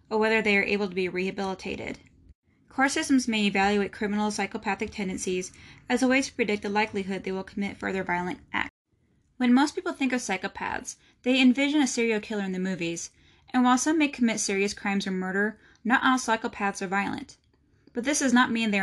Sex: female